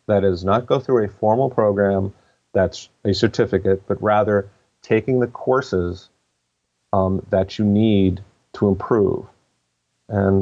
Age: 40-59